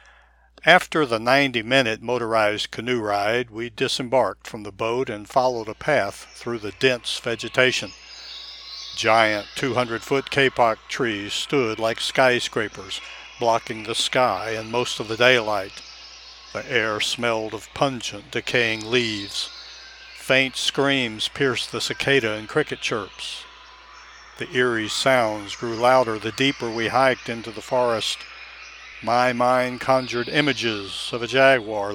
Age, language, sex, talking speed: 60-79, English, male, 130 wpm